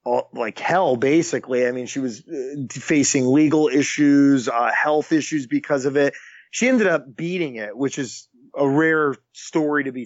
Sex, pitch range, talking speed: male, 135-165 Hz, 165 wpm